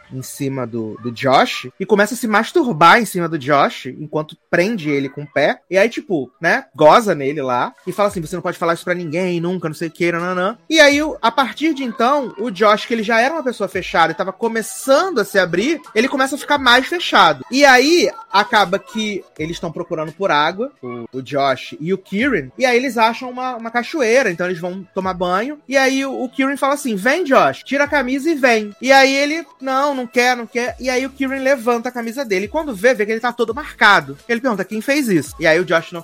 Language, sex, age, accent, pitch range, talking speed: Portuguese, male, 20-39, Brazilian, 165-255 Hz, 245 wpm